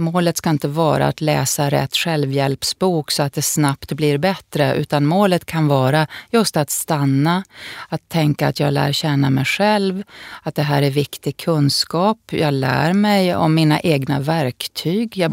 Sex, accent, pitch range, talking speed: female, native, 145-185 Hz, 170 wpm